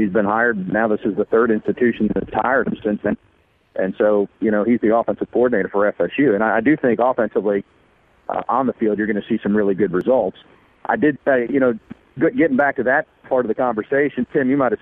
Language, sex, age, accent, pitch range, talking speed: English, male, 40-59, American, 105-125 Hz, 235 wpm